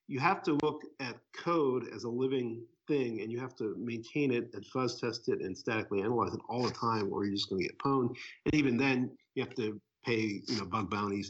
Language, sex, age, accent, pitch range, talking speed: English, male, 50-69, American, 105-135 Hz, 240 wpm